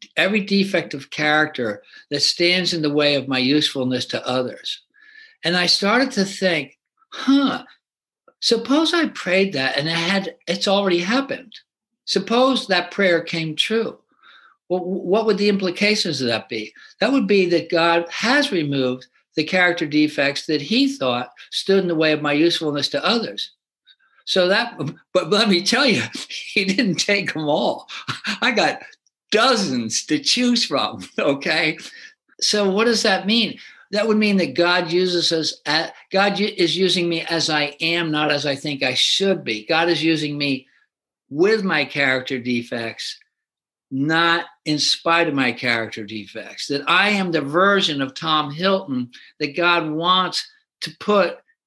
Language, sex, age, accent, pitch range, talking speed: English, male, 60-79, American, 150-215 Hz, 160 wpm